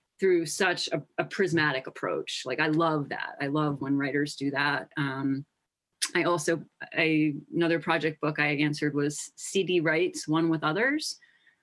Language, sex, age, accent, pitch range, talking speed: English, female, 30-49, American, 150-180 Hz, 160 wpm